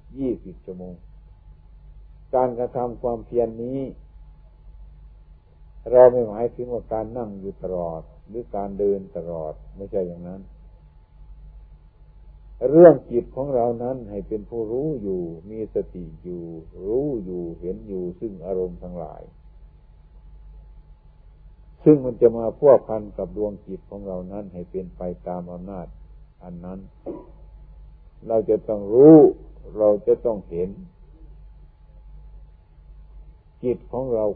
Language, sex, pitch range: Thai, male, 80-120 Hz